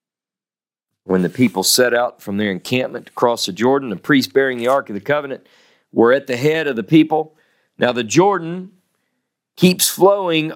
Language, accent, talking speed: English, American, 180 wpm